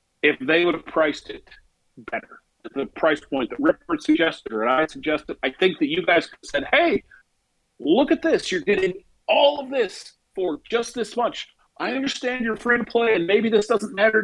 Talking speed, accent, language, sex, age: 200 wpm, American, English, male, 40-59